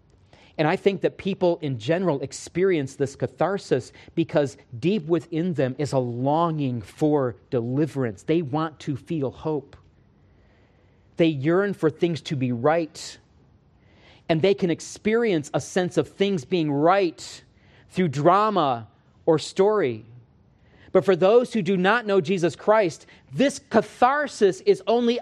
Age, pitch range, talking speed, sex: 40-59, 130-195 Hz, 140 wpm, male